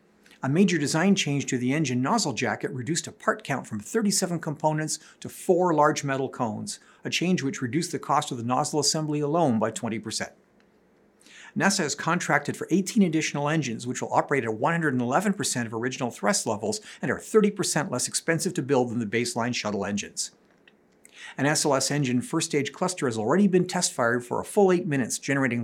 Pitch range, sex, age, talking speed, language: 125-175 Hz, male, 50-69, 185 wpm, English